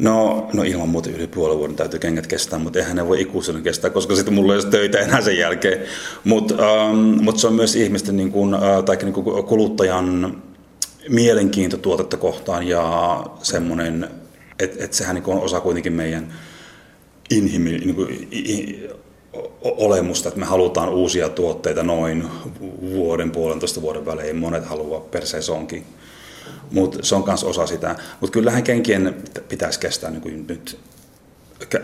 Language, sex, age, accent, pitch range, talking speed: Finnish, male, 30-49, native, 85-100 Hz, 160 wpm